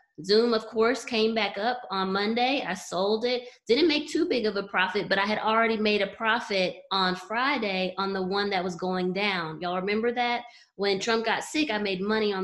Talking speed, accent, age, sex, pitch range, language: 215 wpm, American, 20-39, female, 190-240 Hz, English